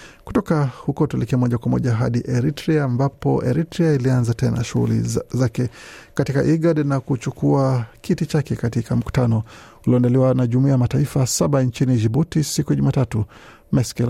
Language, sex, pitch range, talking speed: Swahili, male, 120-140 Hz, 155 wpm